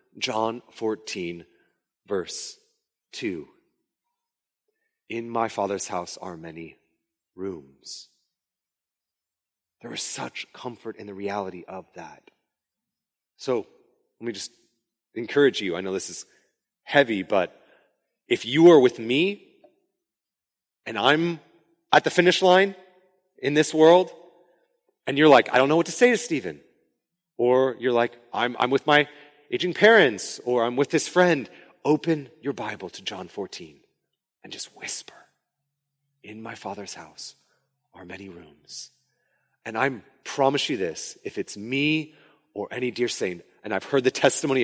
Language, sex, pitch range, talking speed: English, male, 110-175 Hz, 140 wpm